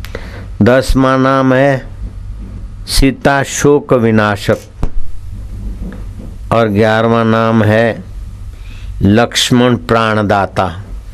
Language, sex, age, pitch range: Hindi, male, 60-79, 95-120 Hz